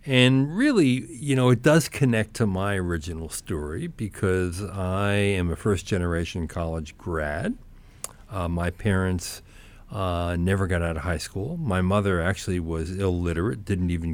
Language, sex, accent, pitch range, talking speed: English, male, American, 85-110 Hz, 155 wpm